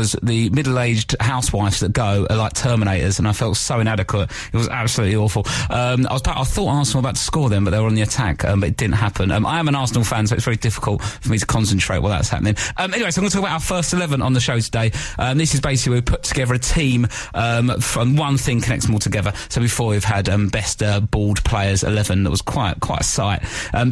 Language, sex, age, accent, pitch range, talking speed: English, male, 30-49, British, 110-145 Hz, 265 wpm